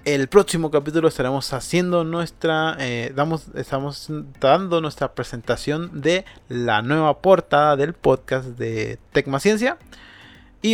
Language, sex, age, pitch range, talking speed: Spanish, male, 30-49, 125-160 Hz, 125 wpm